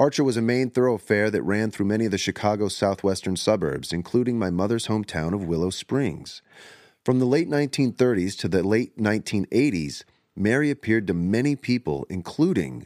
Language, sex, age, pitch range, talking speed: English, male, 30-49, 90-120 Hz, 165 wpm